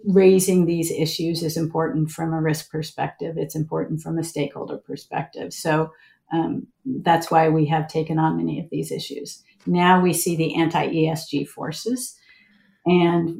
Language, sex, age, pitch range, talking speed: English, female, 50-69, 160-190 Hz, 150 wpm